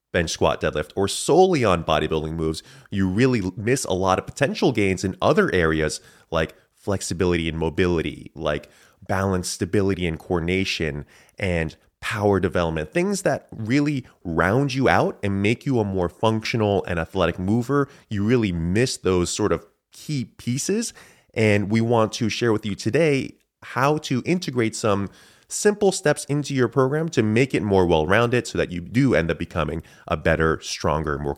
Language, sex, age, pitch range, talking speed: English, male, 30-49, 90-120 Hz, 165 wpm